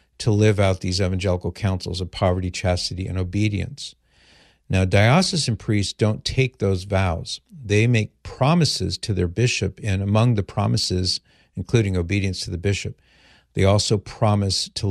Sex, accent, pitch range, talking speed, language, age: male, American, 90-110 Hz, 150 wpm, English, 50-69